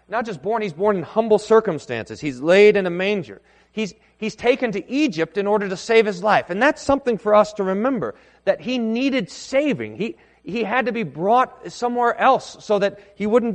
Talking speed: 210 wpm